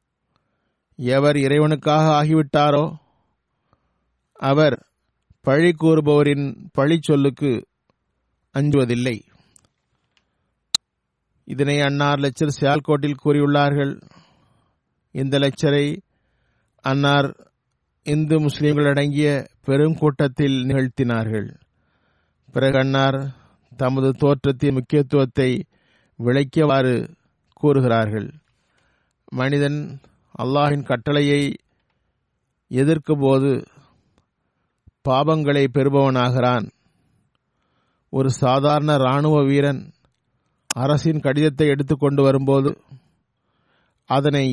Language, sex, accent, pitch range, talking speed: Tamil, male, native, 130-150 Hz, 60 wpm